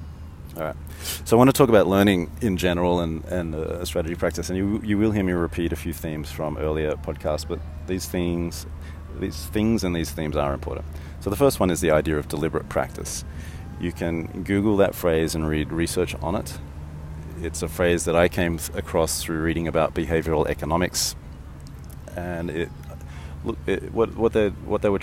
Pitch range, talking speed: 75-90 Hz, 190 wpm